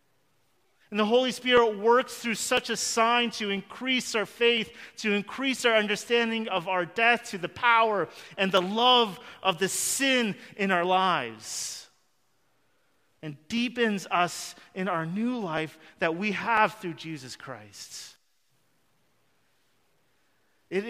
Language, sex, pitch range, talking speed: English, male, 135-215 Hz, 130 wpm